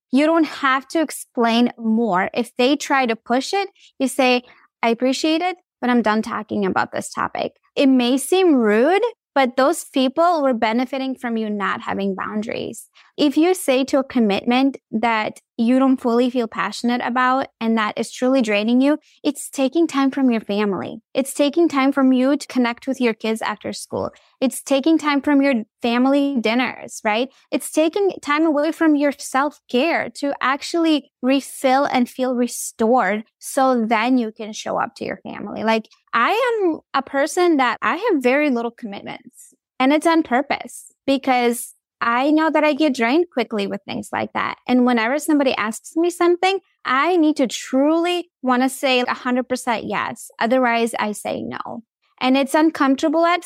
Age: 10-29